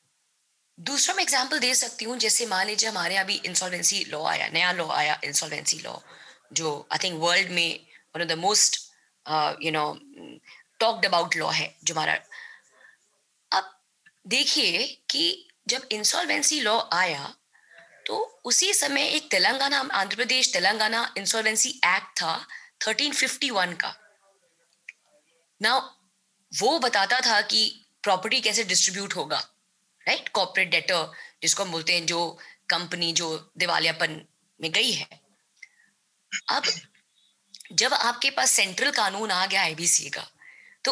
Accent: native